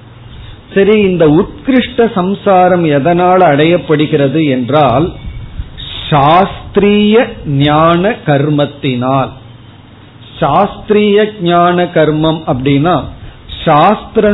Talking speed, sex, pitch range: 45 wpm, male, 130-185 Hz